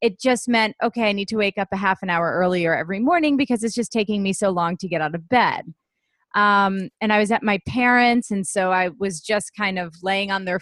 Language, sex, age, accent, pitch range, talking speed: English, female, 30-49, American, 185-235 Hz, 255 wpm